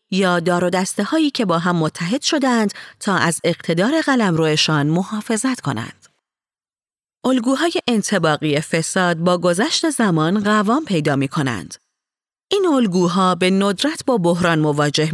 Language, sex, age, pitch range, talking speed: Persian, female, 30-49, 165-230 Hz, 125 wpm